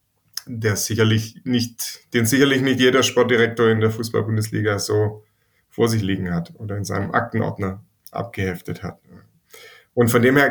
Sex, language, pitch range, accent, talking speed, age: male, German, 110-130 Hz, German, 150 wpm, 20-39